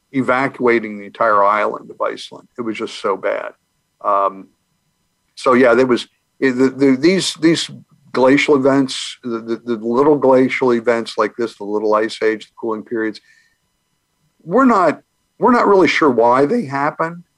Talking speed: 150 wpm